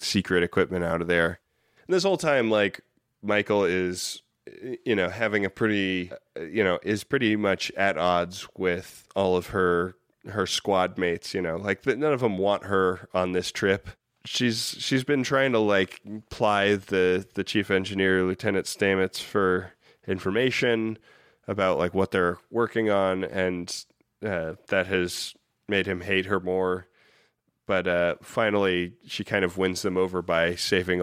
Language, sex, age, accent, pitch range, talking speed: English, male, 10-29, American, 90-105 Hz, 160 wpm